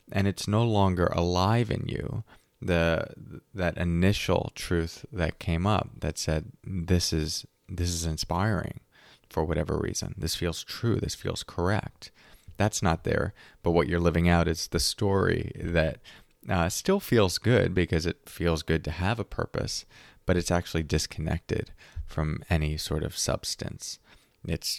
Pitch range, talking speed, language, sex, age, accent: 85-110 Hz, 155 wpm, English, male, 30-49, American